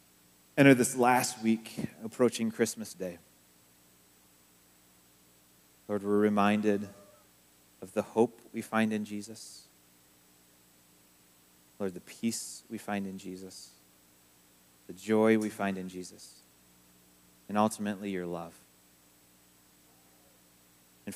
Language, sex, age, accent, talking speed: English, male, 30-49, American, 100 wpm